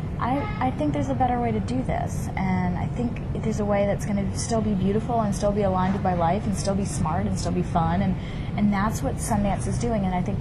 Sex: female